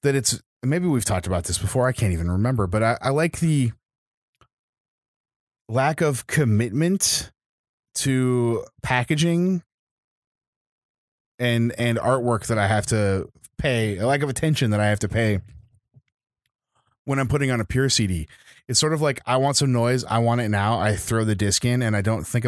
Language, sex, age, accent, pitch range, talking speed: English, male, 20-39, American, 105-135 Hz, 180 wpm